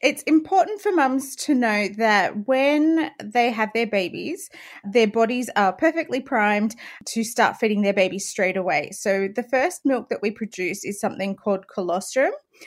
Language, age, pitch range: English, 30-49, 200-250 Hz